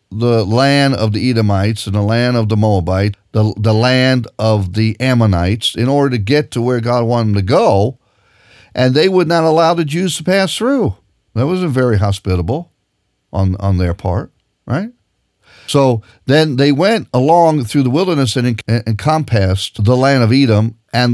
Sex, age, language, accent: male, 50-69, English, American